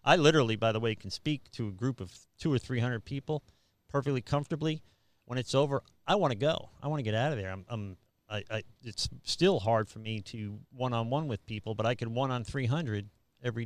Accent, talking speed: American, 215 wpm